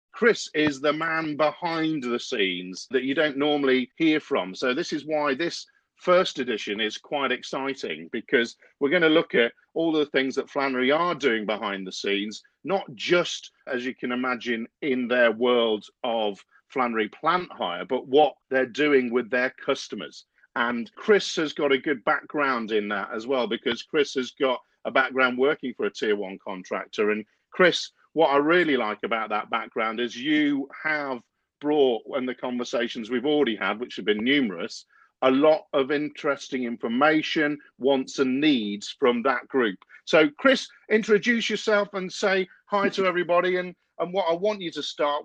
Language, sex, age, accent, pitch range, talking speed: English, male, 40-59, British, 130-175 Hz, 175 wpm